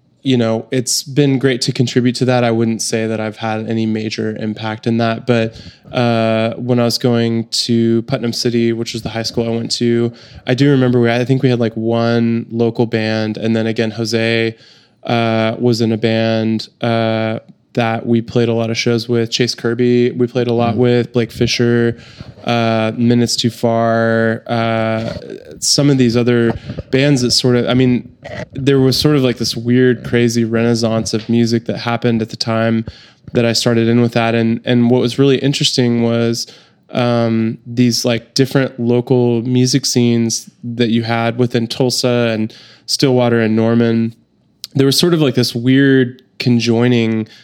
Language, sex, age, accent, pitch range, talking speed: English, male, 20-39, American, 115-125 Hz, 180 wpm